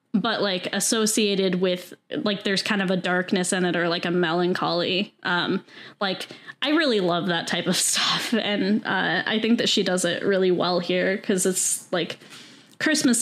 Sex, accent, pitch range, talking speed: female, American, 180-220 Hz, 180 wpm